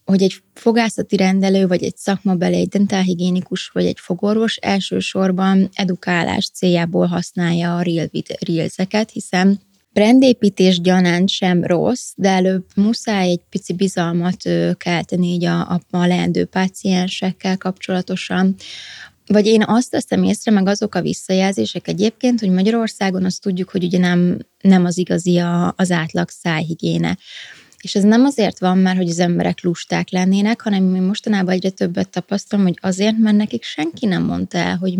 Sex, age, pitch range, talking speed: female, 20-39, 180-200 Hz, 145 wpm